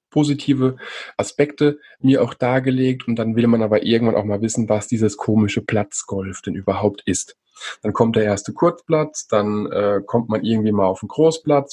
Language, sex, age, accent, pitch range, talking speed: German, male, 20-39, German, 110-130 Hz, 180 wpm